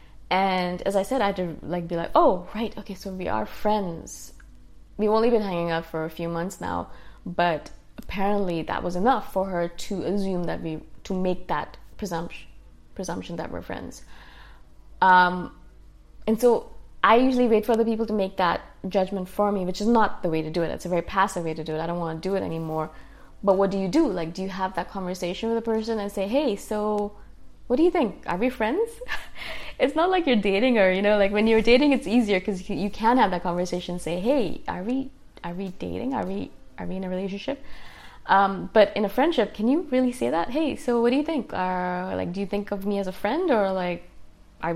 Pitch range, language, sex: 175-225 Hz, English, female